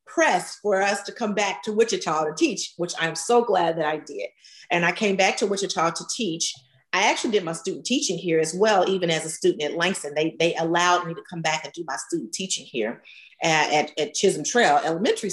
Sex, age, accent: female, 40-59, American